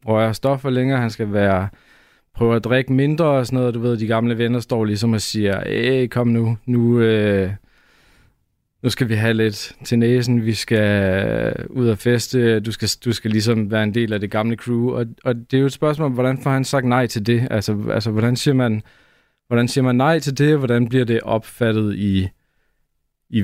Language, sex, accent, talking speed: Danish, male, native, 220 wpm